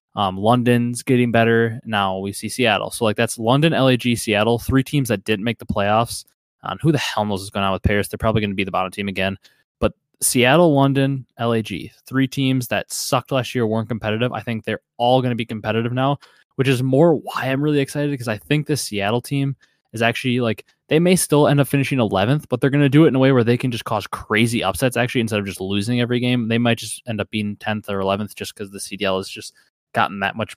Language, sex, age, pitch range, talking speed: English, male, 20-39, 105-125 Hz, 245 wpm